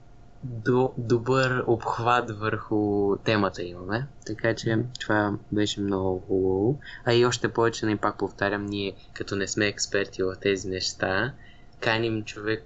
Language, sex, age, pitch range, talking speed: Bulgarian, male, 20-39, 100-125 Hz, 130 wpm